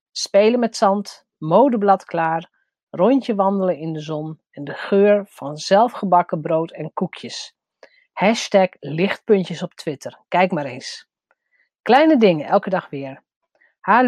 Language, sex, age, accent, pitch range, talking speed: Dutch, female, 40-59, Dutch, 175-225 Hz, 130 wpm